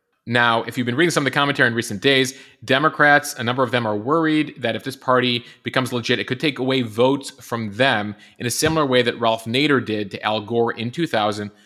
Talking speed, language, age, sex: 230 wpm, English, 30-49, male